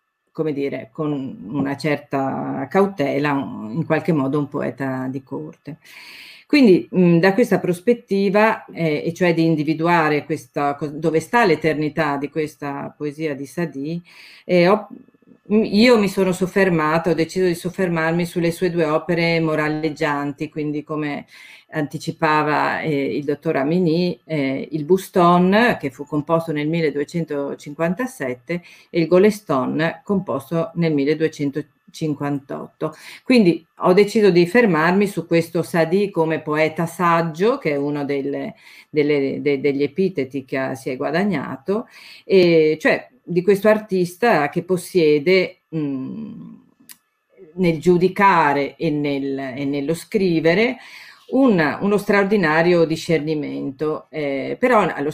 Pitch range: 150-185 Hz